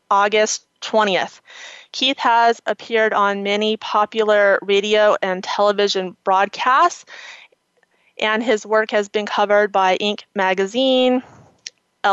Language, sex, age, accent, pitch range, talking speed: English, female, 30-49, American, 205-250 Hz, 105 wpm